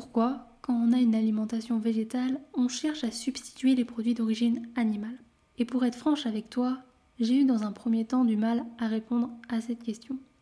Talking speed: 195 wpm